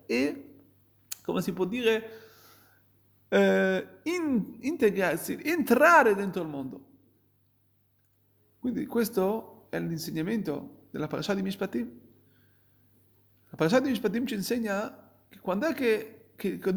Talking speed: 115 wpm